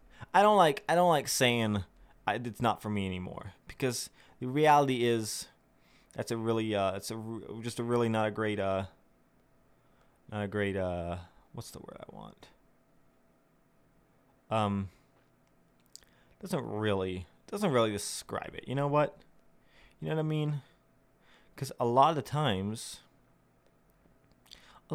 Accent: American